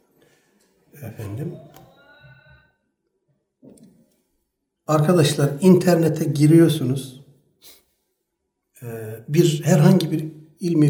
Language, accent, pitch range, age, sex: Turkish, native, 120-155 Hz, 60-79, male